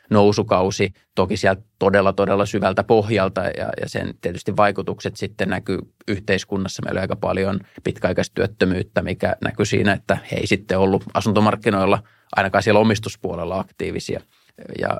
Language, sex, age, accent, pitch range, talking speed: Finnish, male, 20-39, native, 95-110 Hz, 130 wpm